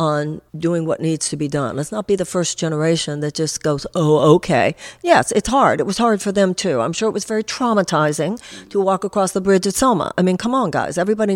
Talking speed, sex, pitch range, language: 245 wpm, female, 160-215 Hz, English